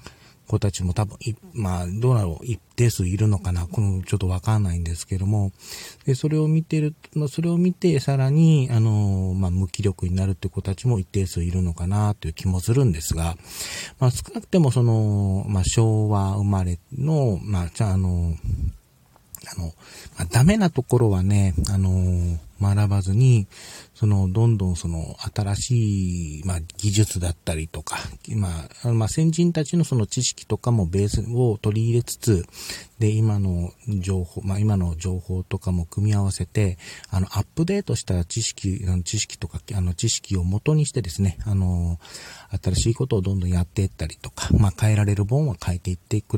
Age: 40-59